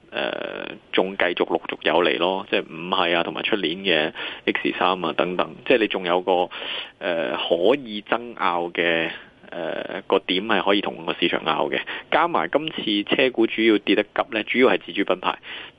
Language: Chinese